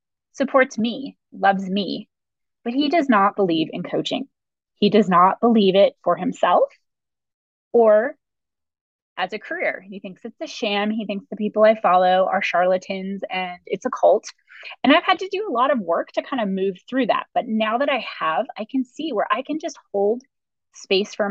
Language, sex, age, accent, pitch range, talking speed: English, female, 20-39, American, 200-265 Hz, 195 wpm